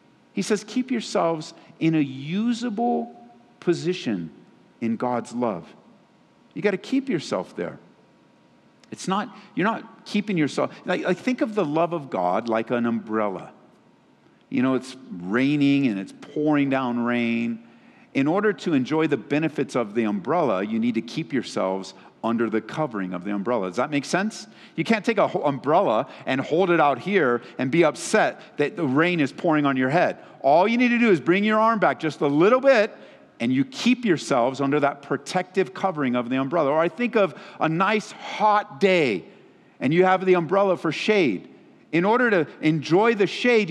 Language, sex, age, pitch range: English, male, 50-69, 140-210 Hz